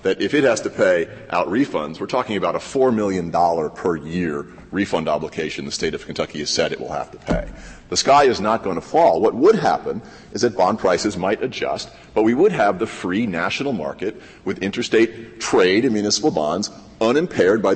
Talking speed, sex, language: 205 wpm, male, English